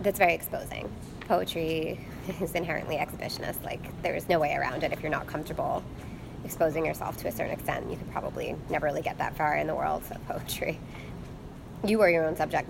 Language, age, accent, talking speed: English, 20-39, American, 200 wpm